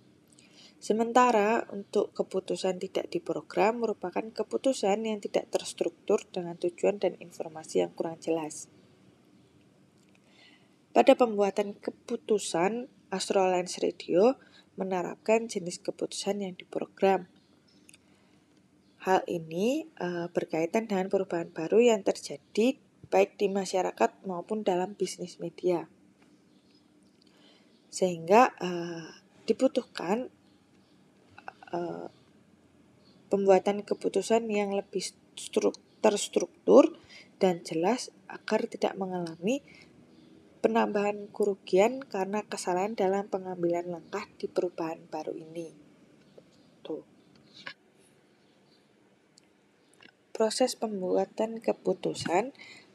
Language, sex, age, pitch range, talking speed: Indonesian, female, 20-39, 180-215 Hz, 85 wpm